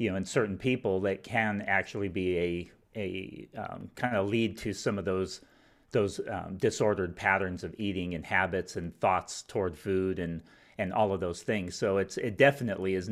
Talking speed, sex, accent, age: 190 wpm, male, American, 30-49